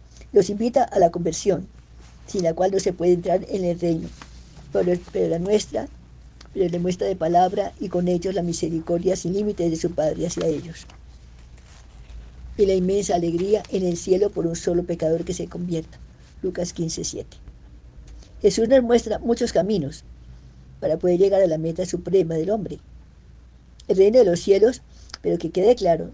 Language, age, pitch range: Spanish, 50-69, 145-200 Hz